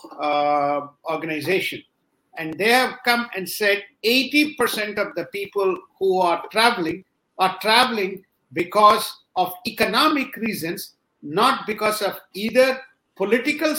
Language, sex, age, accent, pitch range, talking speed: English, male, 50-69, Indian, 170-245 Hz, 115 wpm